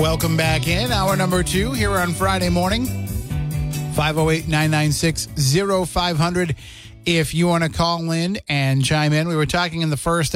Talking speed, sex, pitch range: 150 wpm, male, 120-165 Hz